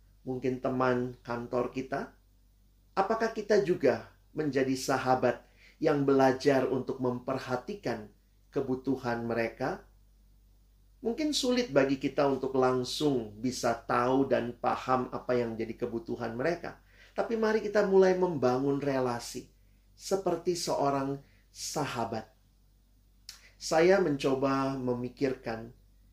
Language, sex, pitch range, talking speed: Indonesian, male, 115-140 Hz, 95 wpm